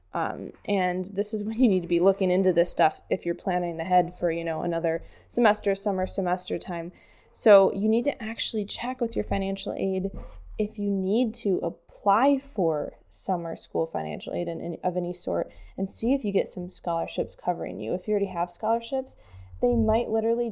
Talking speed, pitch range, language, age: 190 wpm, 175-215 Hz, English, 10-29